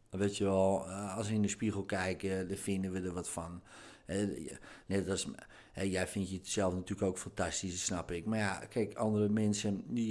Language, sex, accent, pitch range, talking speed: Dutch, male, Dutch, 100-140 Hz, 190 wpm